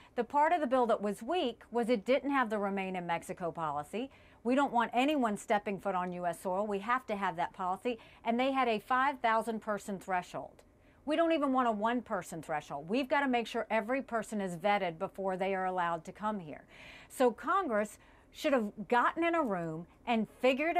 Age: 50-69